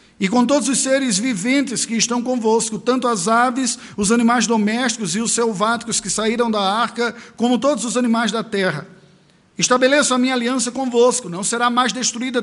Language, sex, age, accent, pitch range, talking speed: Portuguese, male, 50-69, Brazilian, 195-240 Hz, 180 wpm